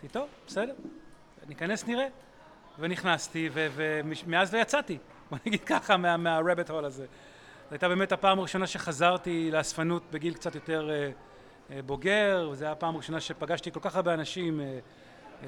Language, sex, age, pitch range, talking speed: Hebrew, male, 30-49, 155-185 Hz, 145 wpm